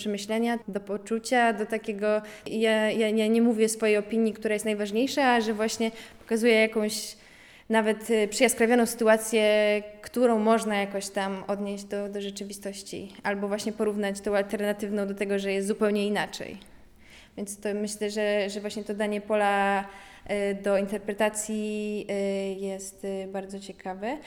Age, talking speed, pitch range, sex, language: 20-39, 140 wpm, 200-220 Hz, female, Polish